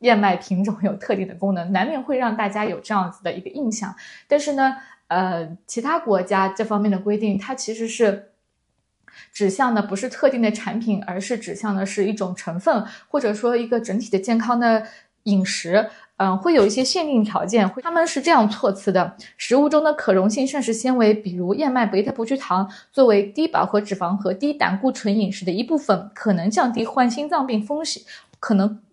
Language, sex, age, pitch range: Chinese, female, 20-39, 195-250 Hz